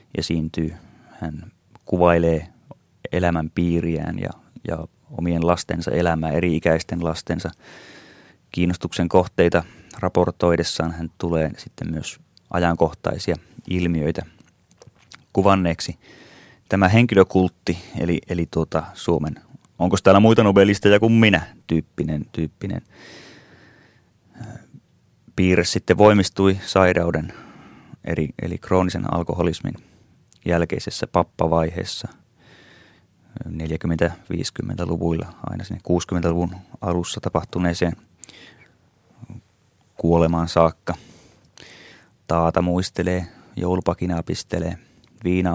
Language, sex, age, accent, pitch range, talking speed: Finnish, male, 30-49, native, 85-95 Hz, 80 wpm